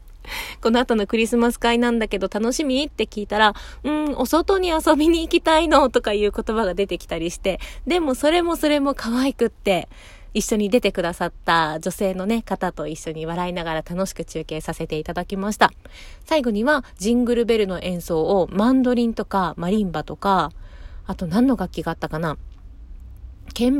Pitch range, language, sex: 170-240 Hz, Japanese, female